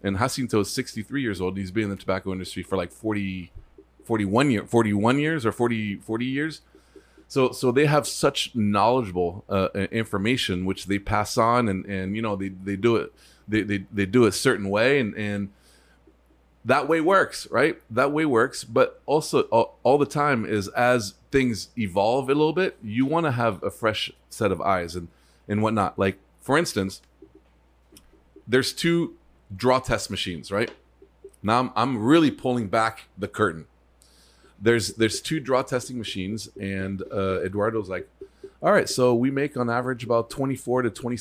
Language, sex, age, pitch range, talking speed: English, male, 30-49, 100-130 Hz, 180 wpm